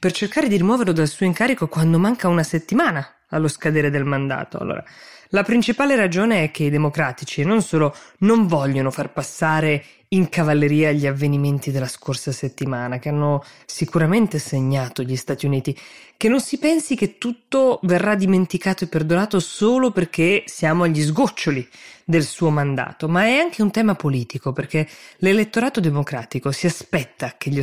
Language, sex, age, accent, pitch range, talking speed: Italian, female, 20-39, native, 140-195 Hz, 160 wpm